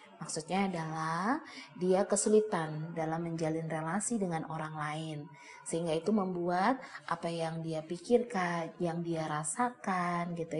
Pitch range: 155-210 Hz